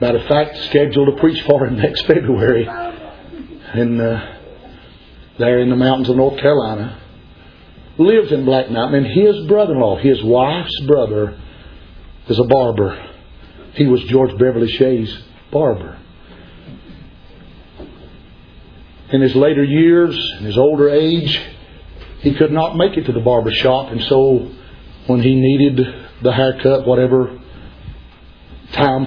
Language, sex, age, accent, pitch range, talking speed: English, male, 50-69, American, 110-145 Hz, 130 wpm